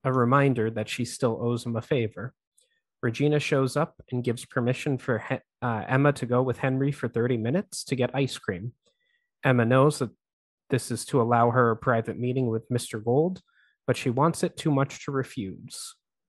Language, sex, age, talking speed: English, male, 30-49, 190 wpm